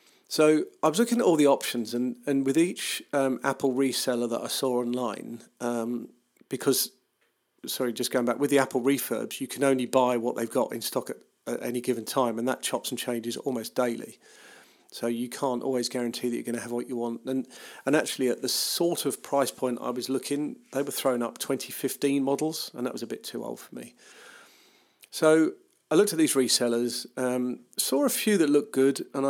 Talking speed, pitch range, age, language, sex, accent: 215 wpm, 120-140 Hz, 40-59, English, male, British